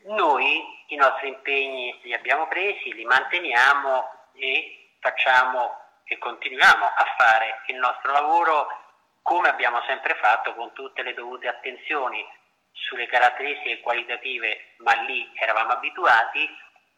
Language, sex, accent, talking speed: Italian, male, native, 120 wpm